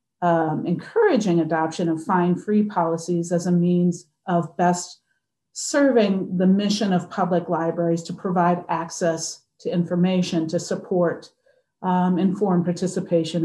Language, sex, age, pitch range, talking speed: English, female, 40-59, 170-210 Hz, 125 wpm